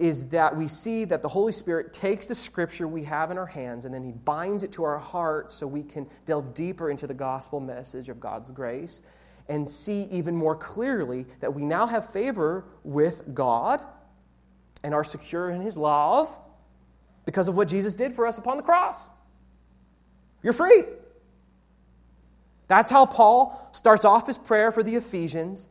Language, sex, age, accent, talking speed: English, male, 30-49, American, 175 wpm